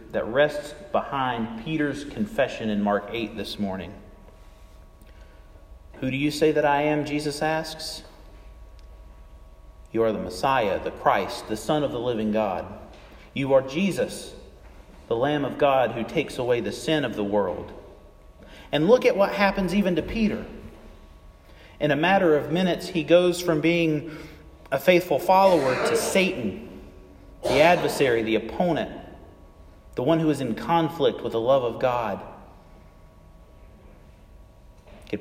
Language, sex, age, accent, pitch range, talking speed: English, male, 40-59, American, 95-145 Hz, 145 wpm